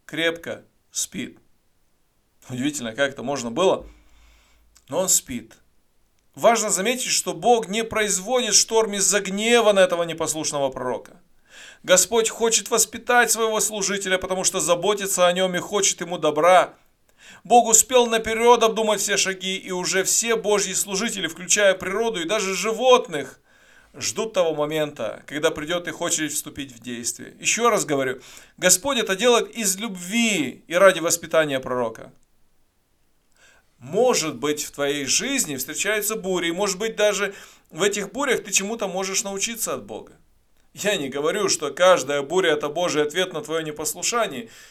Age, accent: 40-59, native